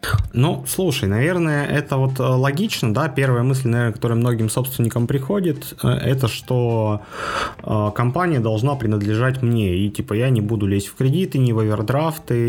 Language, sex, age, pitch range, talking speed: Russian, male, 20-39, 110-140 Hz, 150 wpm